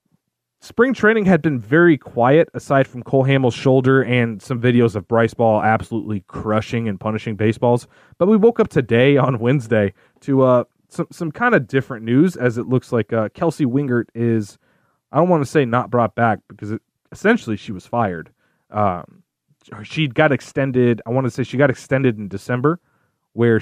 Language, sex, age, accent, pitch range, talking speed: English, male, 30-49, American, 110-135 Hz, 180 wpm